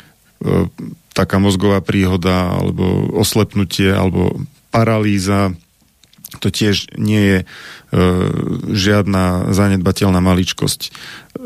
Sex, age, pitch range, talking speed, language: male, 40-59, 95-105 Hz, 80 wpm, Slovak